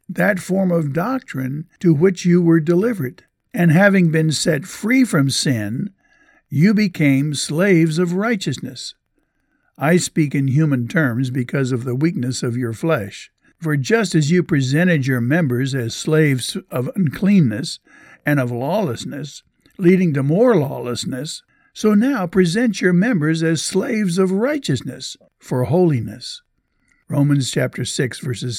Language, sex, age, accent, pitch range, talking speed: English, male, 60-79, American, 130-180 Hz, 140 wpm